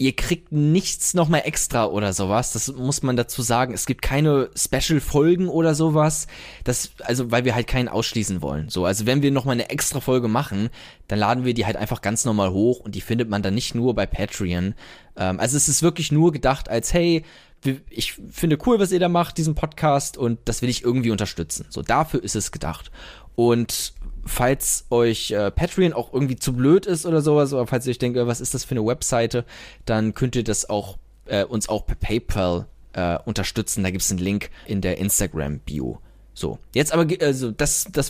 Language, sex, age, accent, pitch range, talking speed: German, male, 20-39, German, 110-145 Hz, 210 wpm